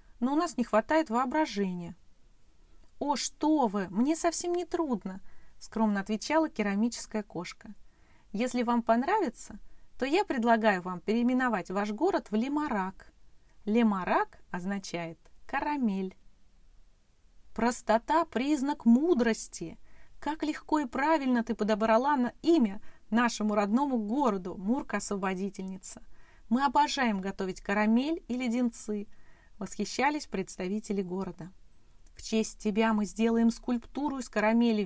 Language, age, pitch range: Russian, 30-49, 200-255 Hz